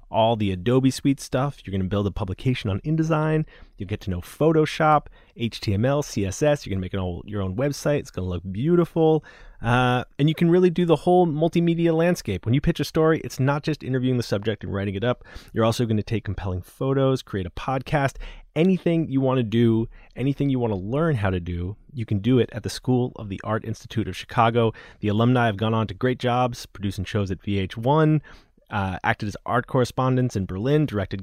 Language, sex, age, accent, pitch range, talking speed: English, male, 30-49, American, 100-135 Hz, 215 wpm